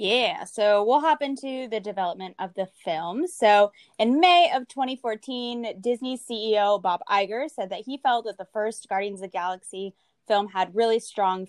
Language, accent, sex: English, American, female